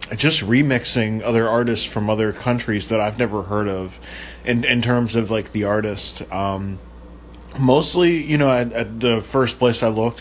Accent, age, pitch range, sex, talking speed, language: American, 20-39, 100-130 Hz, male, 165 wpm, English